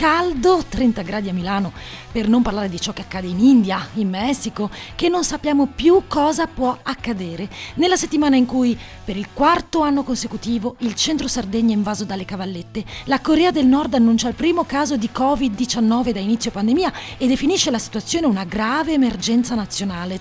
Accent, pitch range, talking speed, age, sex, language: native, 220-300 Hz, 180 wpm, 30-49, female, Italian